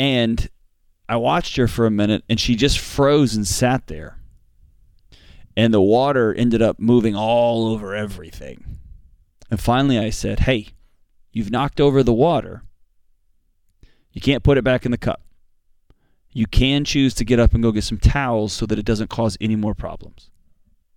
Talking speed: 170 wpm